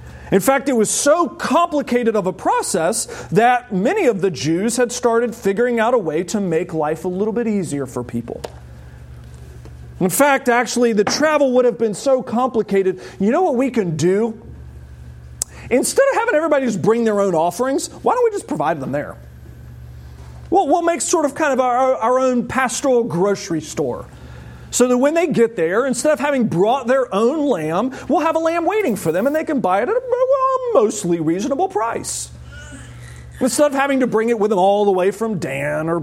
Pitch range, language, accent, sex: 165-275 Hz, English, American, male